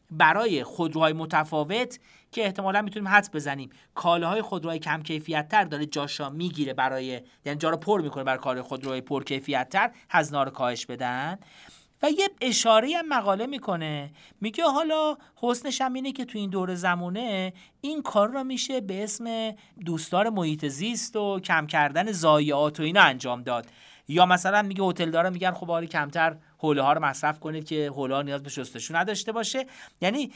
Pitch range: 145-205 Hz